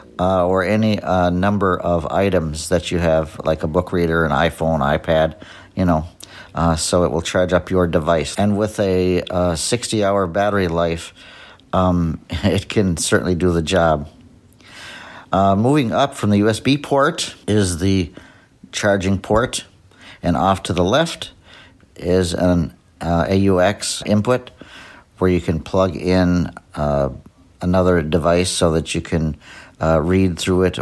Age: 60-79